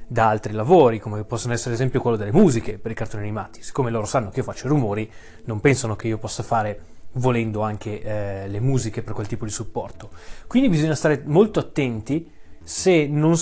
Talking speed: 205 wpm